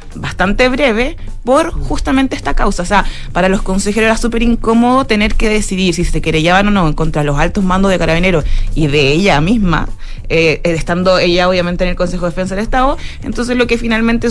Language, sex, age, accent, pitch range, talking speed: Spanish, female, 20-39, Venezuelan, 170-225 Hz, 200 wpm